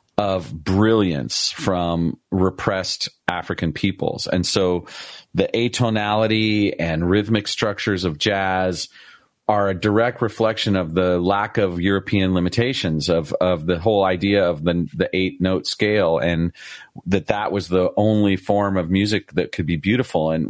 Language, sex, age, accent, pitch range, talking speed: English, male, 40-59, American, 90-105 Hz, 145 wpm